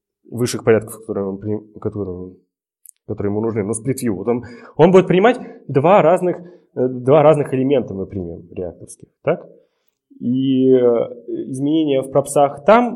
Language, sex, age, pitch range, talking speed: Russian, male, 20-39, 110-155 Hz, 105 wpm